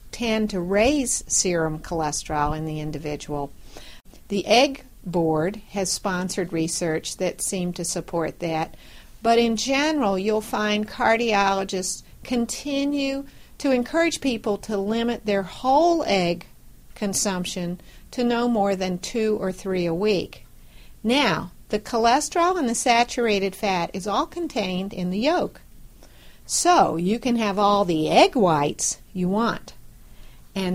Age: 50-69